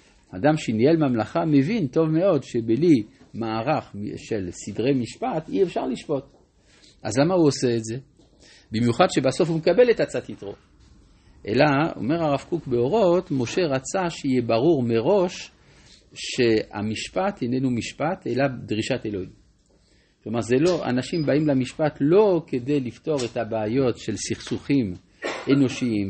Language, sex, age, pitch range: Hebrew, male, 50-69, 110-150 Hz